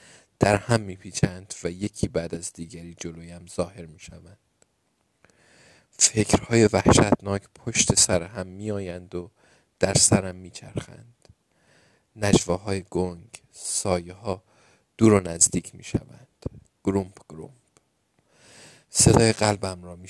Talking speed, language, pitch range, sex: 115 wpm, Persian, 90-110 Hz, male